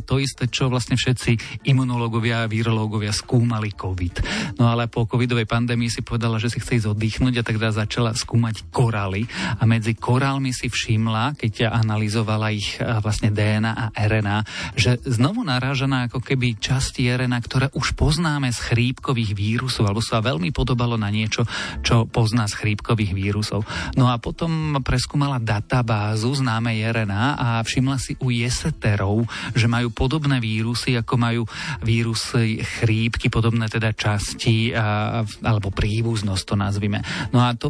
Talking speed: 150 wpm